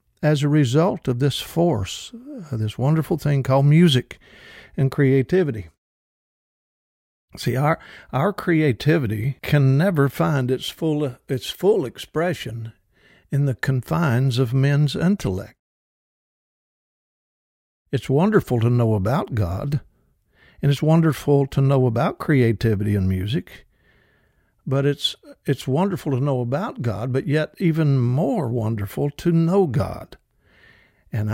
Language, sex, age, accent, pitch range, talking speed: English, male, 60-79, American, 120-160 Hz, 125 wpm